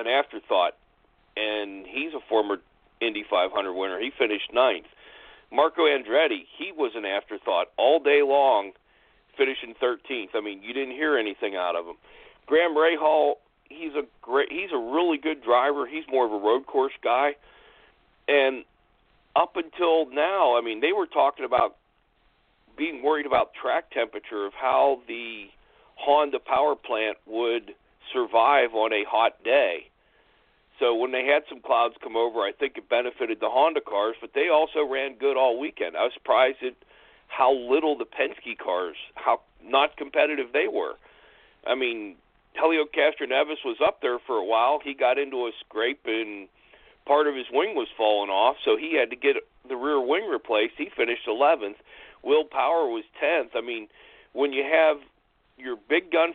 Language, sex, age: English, male, 40-59